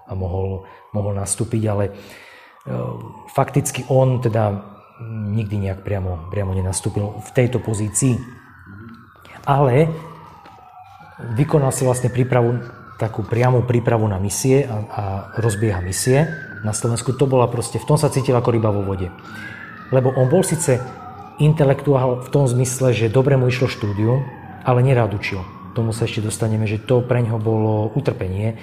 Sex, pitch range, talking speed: male, 105-125 Hz, 145 wpm